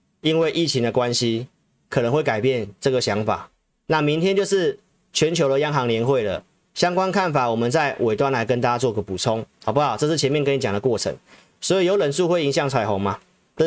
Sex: male